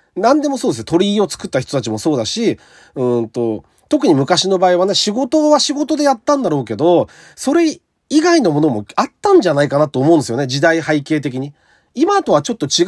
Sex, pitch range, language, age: male, 125-210 Hz, Japanese, 40-59